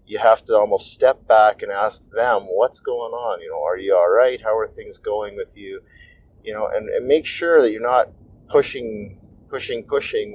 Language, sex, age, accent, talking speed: English, male, 30-49, American, 210 wpm